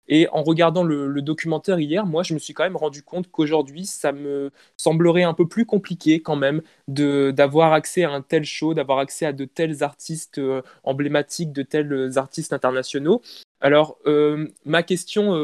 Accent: French